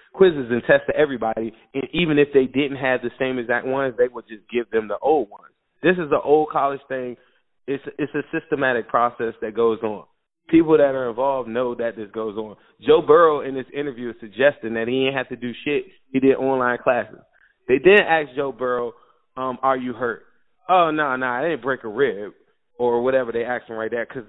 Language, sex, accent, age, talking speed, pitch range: English, male, American, 20-39, 220 wpm, 125-185 Hz